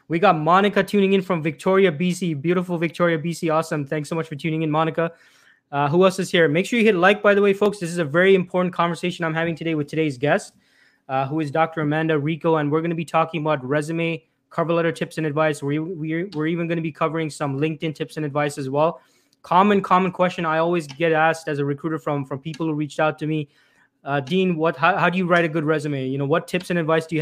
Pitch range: 155-180 Hz